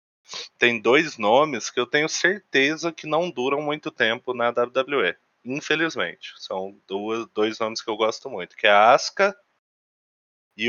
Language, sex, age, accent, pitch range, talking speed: Portuguese, male, 20-39, Brazilian, 115-160 Hz, 155 wpm